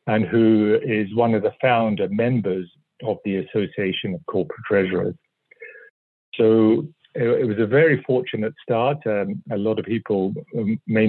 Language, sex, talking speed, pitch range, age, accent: English, male, 145 wpm, 100-115 Hz, 50-69, British